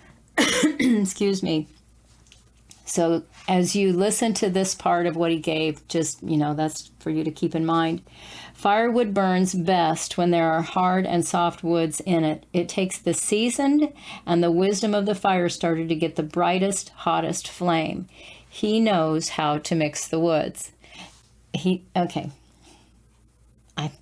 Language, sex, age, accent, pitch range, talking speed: English, female, 50-69, American, 165-195 Hz, 155 wpm